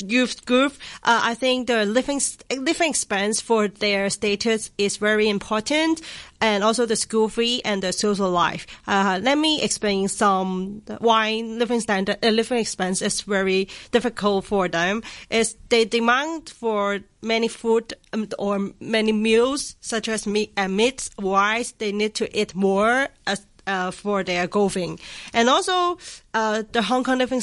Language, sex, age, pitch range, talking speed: English, female, 30-49, 195-230 Hz, 160 wpm